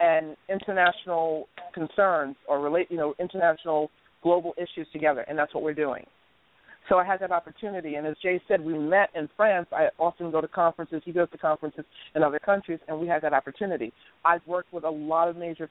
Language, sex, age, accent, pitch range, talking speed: English, female, 50-69, American, 160-190 Hz, 205 wpm